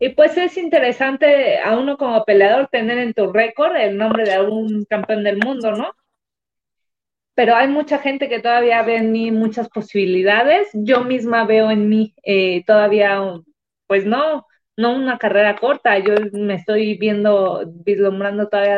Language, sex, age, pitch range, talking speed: Spanish, female, 20-39, 205-235 Hz, 165 wpm